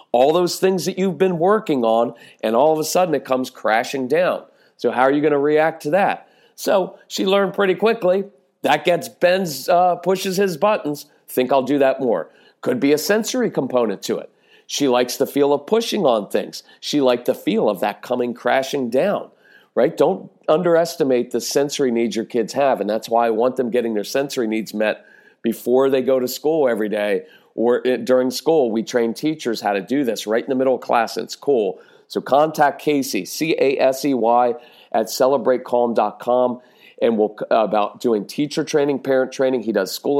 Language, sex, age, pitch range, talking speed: English, male, 40-59, 120-180 Hz, 190 wpm